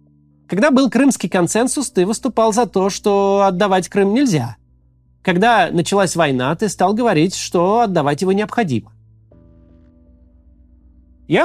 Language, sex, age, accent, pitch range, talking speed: Russian, male, 30-49, native, 150-235 Hz, 120 wpm